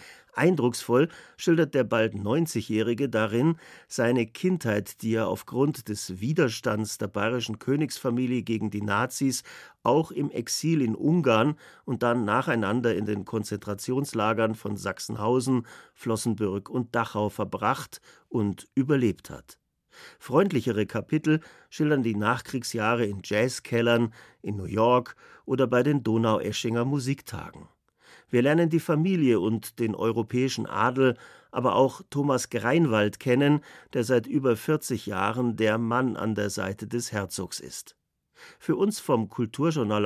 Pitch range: 110-130 Hz